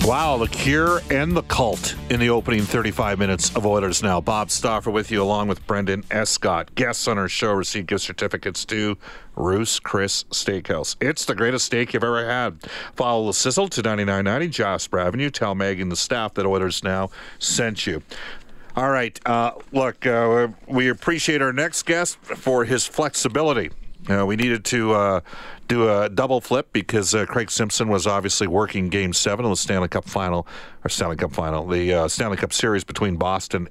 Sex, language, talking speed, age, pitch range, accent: male, English, 185 wpm, 50-69, 95-120 Hz, American